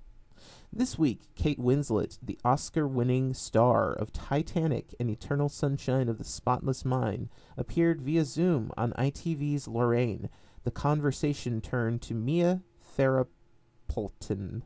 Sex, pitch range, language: male, 110-140 Hz, English